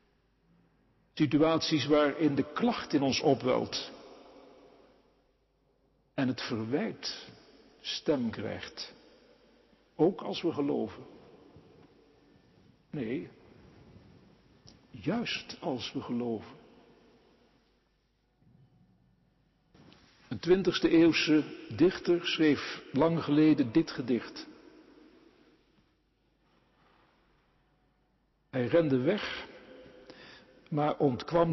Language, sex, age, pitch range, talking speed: Dutch, male, 60-79, 130-155 Hz, 65 wpm